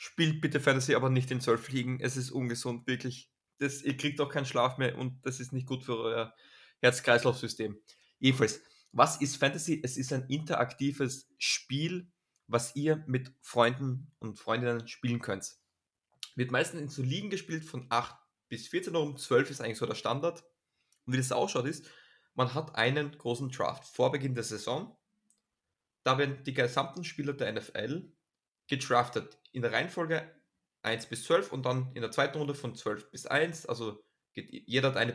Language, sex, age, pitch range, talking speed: German, male, 20-39, 120-145 Hz, 180 wpm